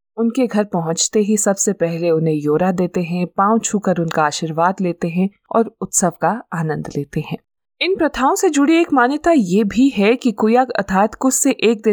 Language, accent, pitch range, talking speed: Hindi, native, 175-235 Hz, 50 wpm